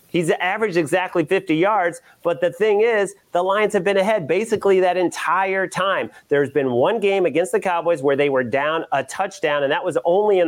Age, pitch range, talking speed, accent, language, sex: 30-49, 140-180 Hz, 205 wpm, American, English, male